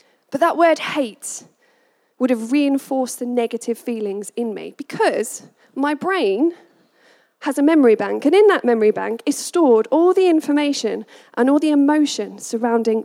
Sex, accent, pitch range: female, British, 230-295 Hz